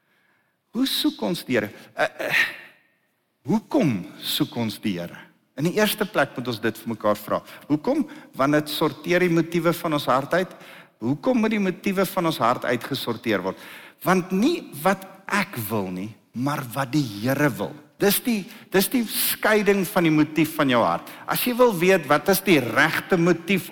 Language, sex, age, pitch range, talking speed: English, male, 50-69, 140-200 Hz, 185 wpm